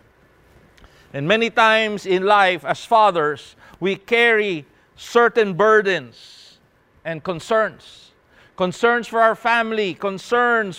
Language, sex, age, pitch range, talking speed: English, male, 50-69, 170-225 Hz, 100 wpm